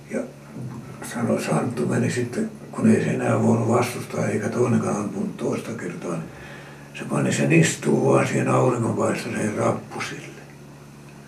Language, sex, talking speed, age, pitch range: Finnish, male, 130 wpm, 60-79, 70-85 Hz